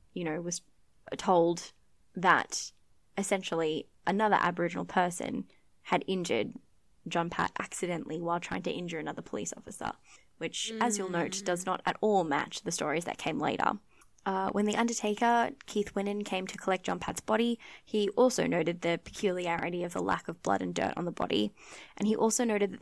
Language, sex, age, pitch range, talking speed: English, female, 10-29, 170-205 Hz, 175 wpm